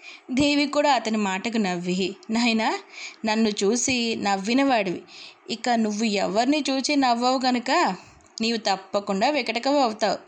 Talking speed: 110 wpm